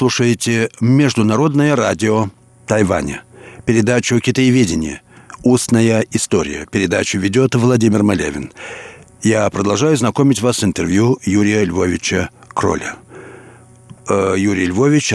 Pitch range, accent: 100-125 Hz, native